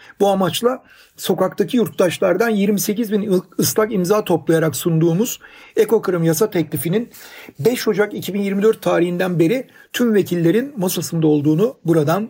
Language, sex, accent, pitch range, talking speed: Turkish, male, native, 160-210 Hz, 115 wpm